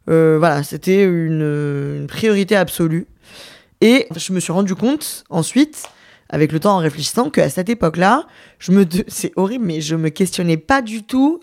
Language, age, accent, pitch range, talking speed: French, 20-39, French, 160-195 Hz, 180 wpm